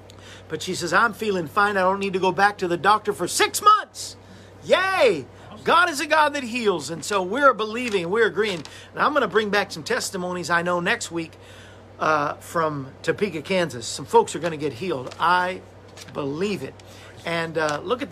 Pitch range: 165-230 Hz